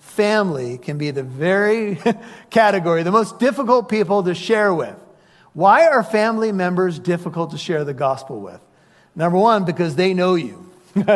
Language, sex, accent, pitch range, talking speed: English, male, American, 175-225 Hz, 155 wpm